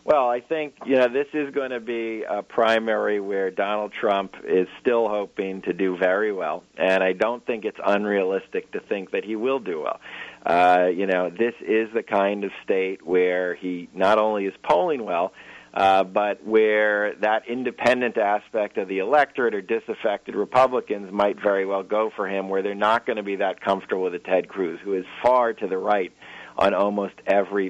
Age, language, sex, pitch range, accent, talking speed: 40-59, English, male, 95-115 Hz, American, 195 wpm